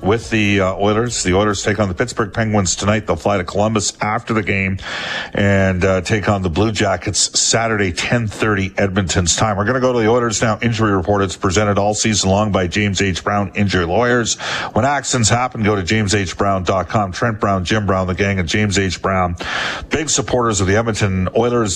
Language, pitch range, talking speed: English, 90-110 Hz, 200 wpm